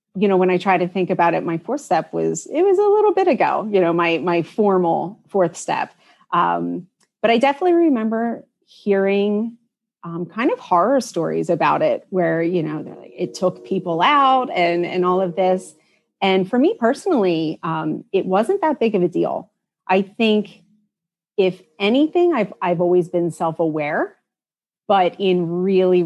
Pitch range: 170-220 Hz